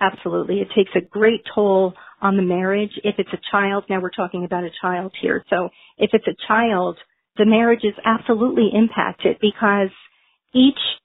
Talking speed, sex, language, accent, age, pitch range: 175 wpm, female, English, American, 40-59, 190-220 Hz